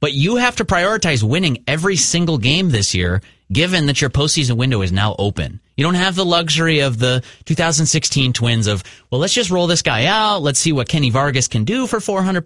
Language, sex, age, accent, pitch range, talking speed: English, male, 30-49, American, 115-160 Hz, 215 wpm